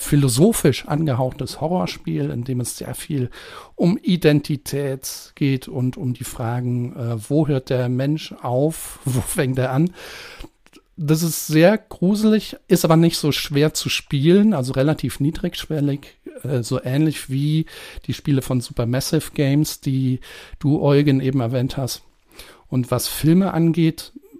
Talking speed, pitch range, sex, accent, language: 145 wpm, 125-160 Hz, male, German, German